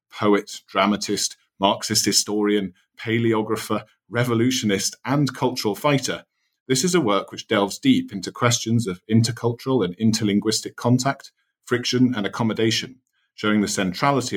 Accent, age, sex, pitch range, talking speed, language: British, 40-59, male, 100-120 Hz, 120 wpm, English